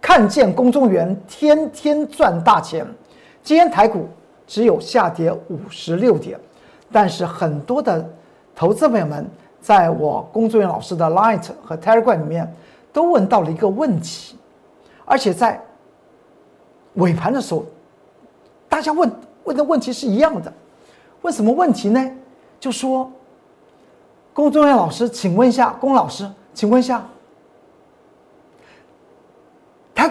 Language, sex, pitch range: Chinese, male, 180-275 Hz